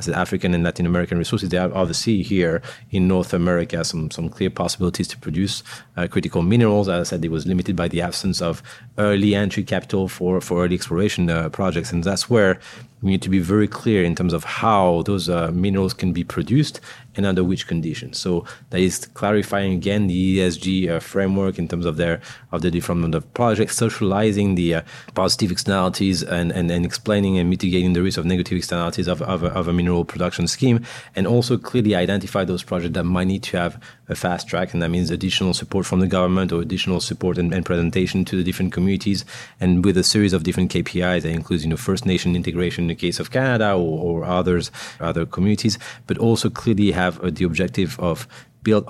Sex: male